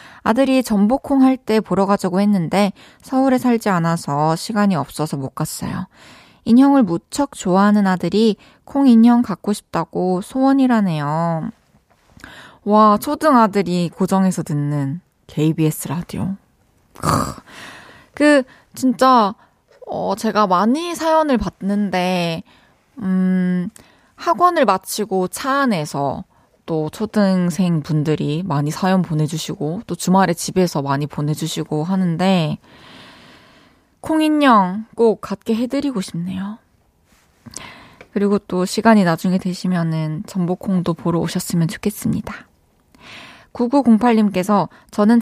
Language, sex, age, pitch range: Korean, female, 20-39, 170-230 Hz